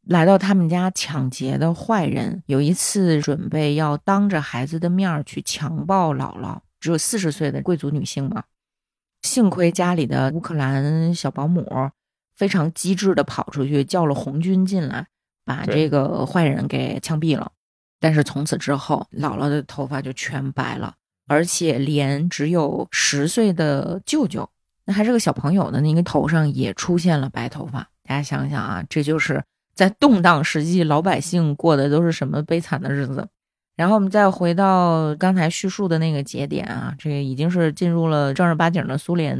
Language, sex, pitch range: Chinese, female, 140-180 Hz